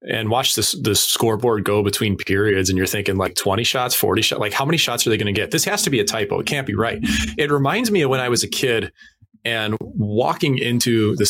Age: 30-49